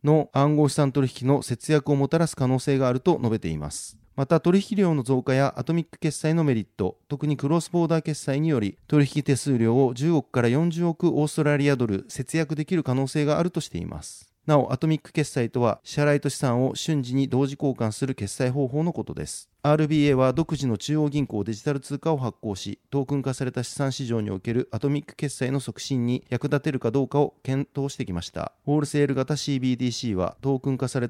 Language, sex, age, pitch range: Japanese, male, 30-49, 125-150 Hz